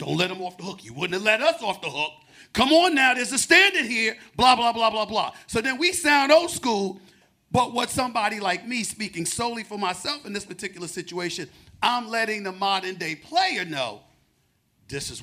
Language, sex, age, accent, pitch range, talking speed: English, male, 40-59, American, 185-265 Hz, 215 wpm